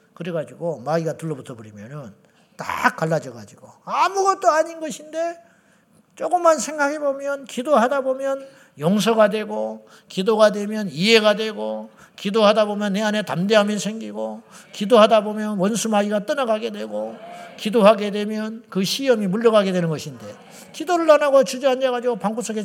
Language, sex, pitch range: Korean, male, 175-265 Hz